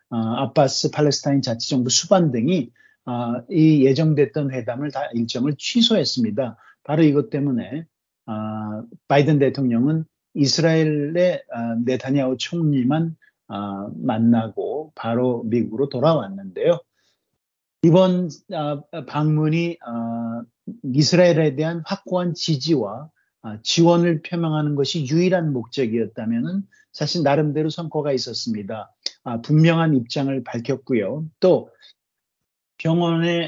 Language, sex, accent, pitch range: Korean, male, native, 120-165 Hz